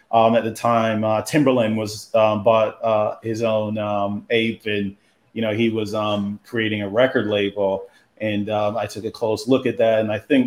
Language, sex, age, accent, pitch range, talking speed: English, male, 30-49, American, 110-135 Hz, 205 wpm